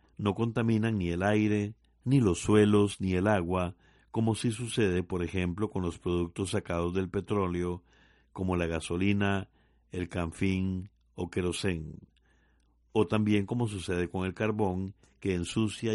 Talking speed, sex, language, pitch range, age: 145 wpm, male, Spanish, 90-110 Hz, 50-69